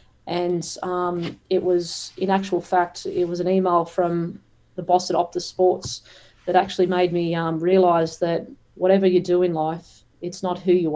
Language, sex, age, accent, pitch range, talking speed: English, female, 30-49, Australian, 175-190 Hz, 180 wpm